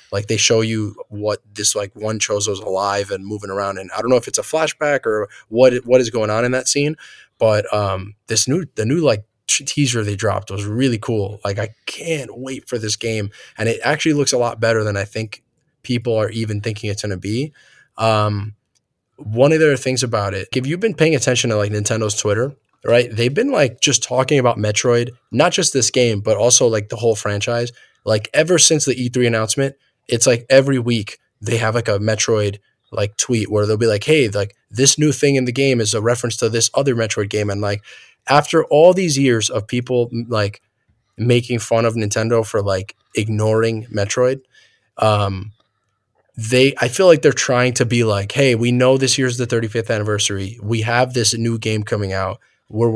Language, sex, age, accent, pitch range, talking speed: English, male, 20-39, American, 105-130 Hz, 205 wpm